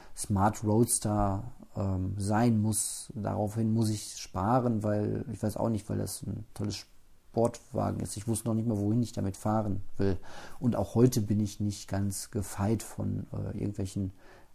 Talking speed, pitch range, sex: 170 wpm, 100-120 Hz, male